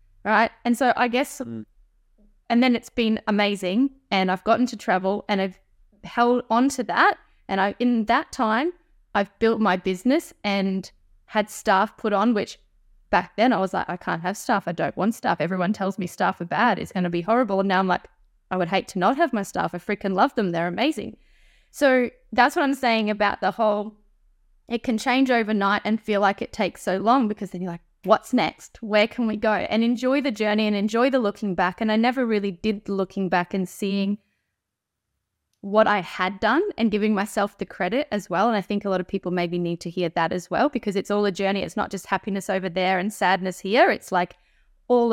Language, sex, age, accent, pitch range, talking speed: English, female, 10-29, Australian, 190-235 Hz, 220 wpm